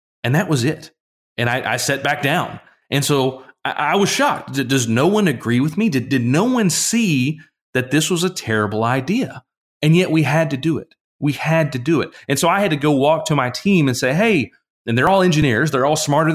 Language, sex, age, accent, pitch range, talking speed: English, male, 30-49, American, 120-155 Hz, 240 wpm